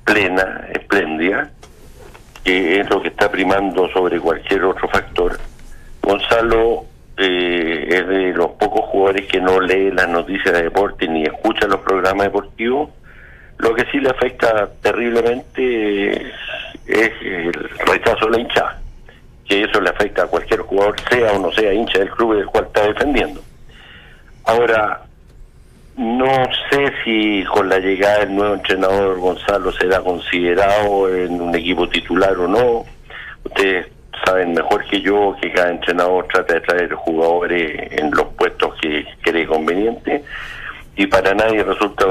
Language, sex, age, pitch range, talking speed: Spanish, male, 60-79, 90-100 Hz, 145 wpm